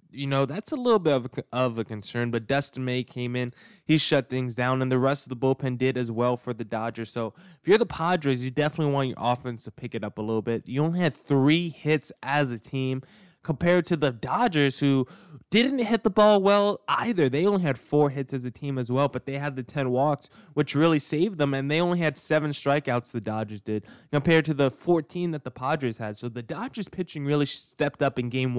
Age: 20-39